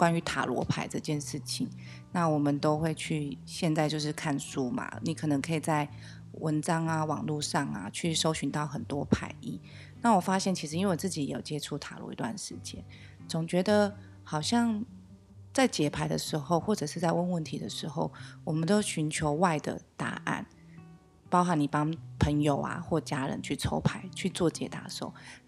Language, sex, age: Chinese, female, 30-49